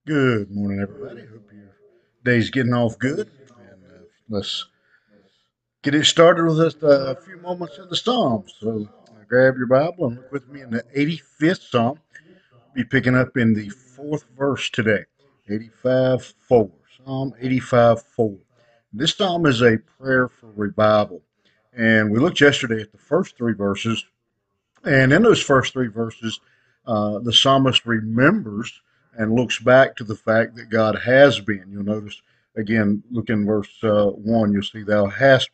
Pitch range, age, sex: 110-135 Hz, 50-69, male